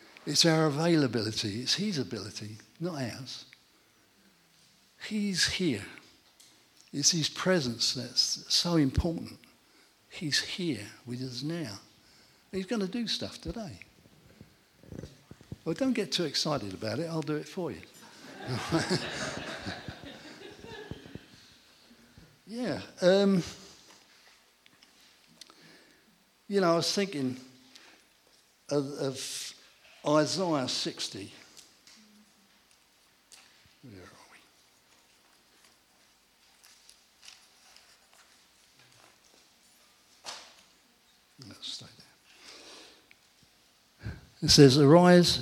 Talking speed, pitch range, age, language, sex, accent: 80 wpm, 120-170 Hz, 60-79, English, male, British